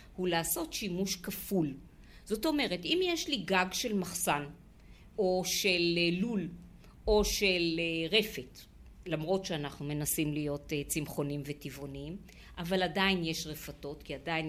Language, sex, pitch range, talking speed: Hebrew, female, 160-240 Hz, 125 wpm